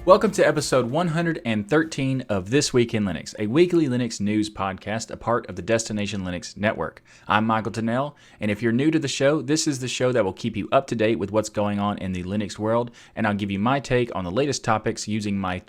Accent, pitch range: American, 100-130 Hz